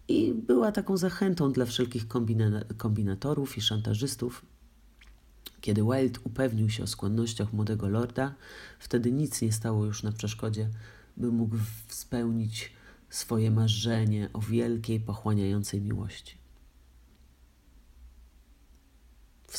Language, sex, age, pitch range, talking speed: Polish, male, 40-59, 105-115 Hz, 105 wpm